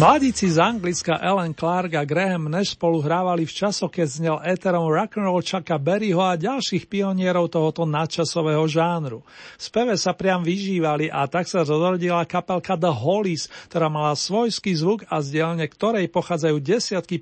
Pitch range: 160-195 Hz